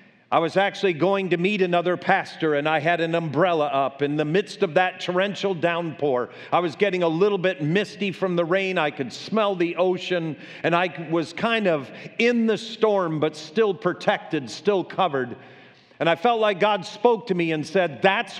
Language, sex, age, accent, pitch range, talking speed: English, male, 50-69, American, 165-205 Hz, 195 wpm